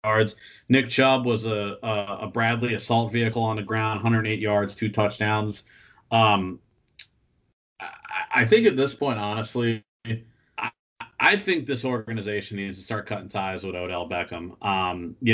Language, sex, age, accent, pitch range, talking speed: English, male, 40-59, American, 100-120 Hz, 155 wpm